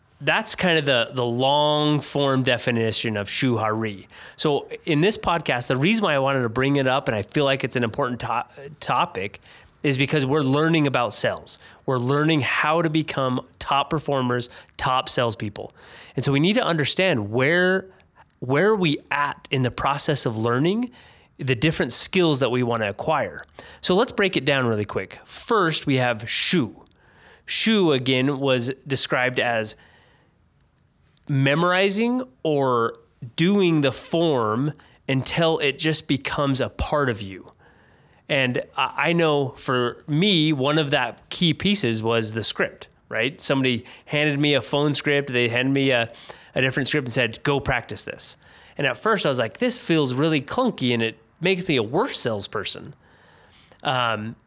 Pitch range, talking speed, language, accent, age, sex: 125-155 Hz, 165 wpm, English, American, 30-49, male